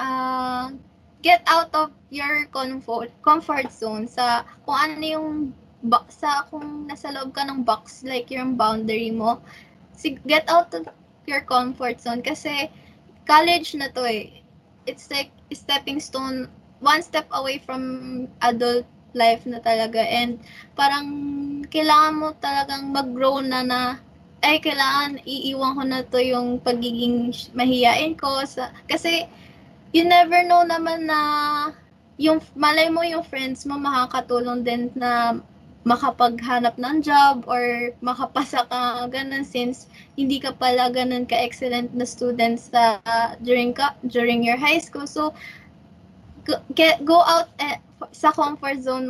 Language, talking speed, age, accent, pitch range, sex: Filipino, 140 wpm, 20-39, native, 245-295 Hz, female